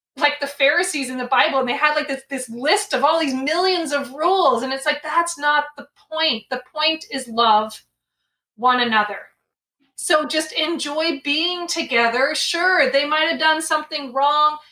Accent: American